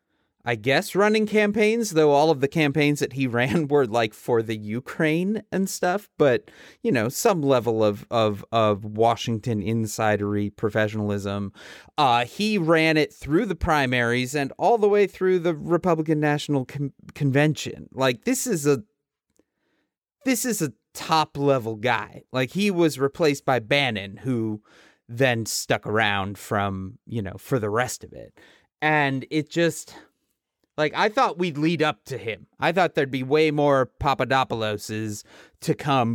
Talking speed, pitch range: 155 wpm, 115-155 Hz